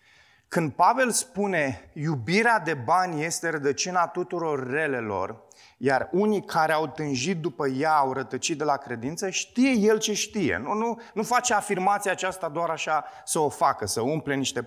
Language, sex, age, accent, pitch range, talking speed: Romanian, male, 30-49, native, 135-195 Hz, 165 wpm